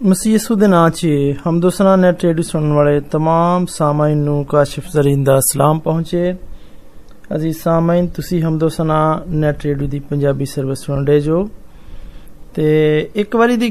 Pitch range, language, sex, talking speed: 155-205 Hz, Hindi, male, 60 wpm